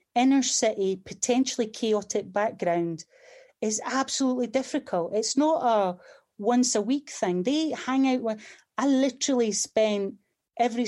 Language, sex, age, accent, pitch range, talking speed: English, female, 30-49, British, 200-260 Hz, 125 wpm